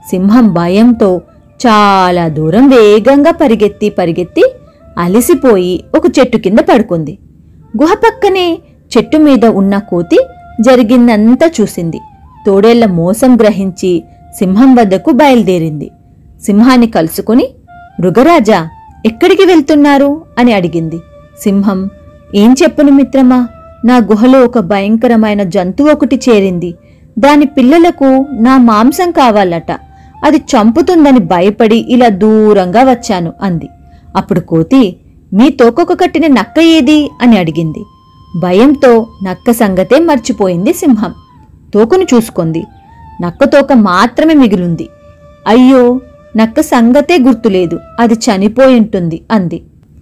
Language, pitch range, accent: Telugu, 190-265 Hz, native